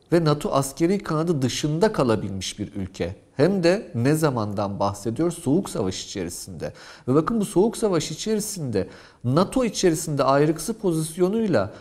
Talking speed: 130 wpm